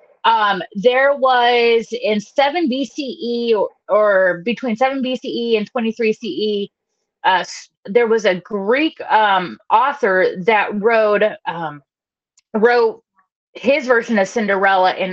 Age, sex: 30-49, female